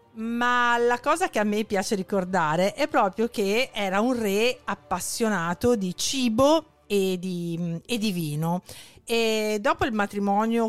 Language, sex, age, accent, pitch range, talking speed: Italian, female, 40-59, native, 185-240 Hz, 140 wpm